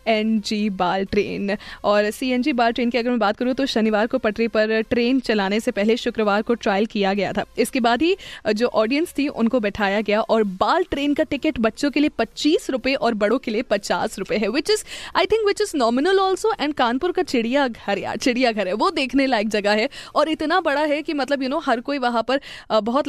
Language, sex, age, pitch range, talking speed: Hindi, female, 20-39, 215-290 Hz, 220 wpm